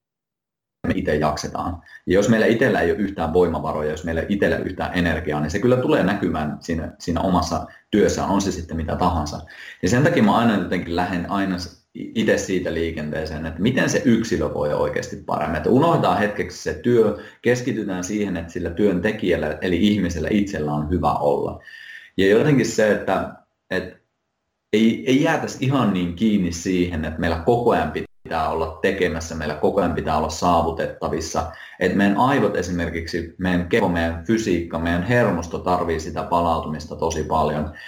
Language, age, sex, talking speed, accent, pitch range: Finnish, 30-49, male, 170 wpm, native, 80-100 Hz